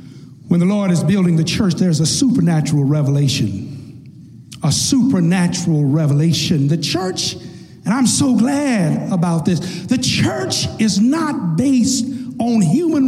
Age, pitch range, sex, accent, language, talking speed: 60-79, 160-270 Hz, male, American, English, 135 wpm